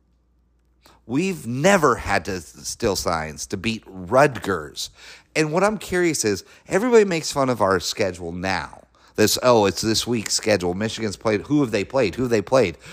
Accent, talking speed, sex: American, 170 wpm, male